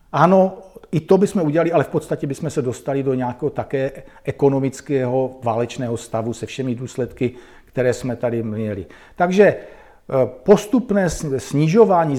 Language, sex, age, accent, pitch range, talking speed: Czech, male, 50-69, native, 125-150 Hz, 135 wpm